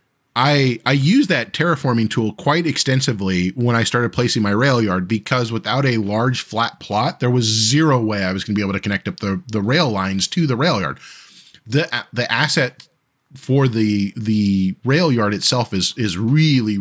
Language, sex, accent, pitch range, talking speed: English, male, American, 105-135 Hz, 195 wpm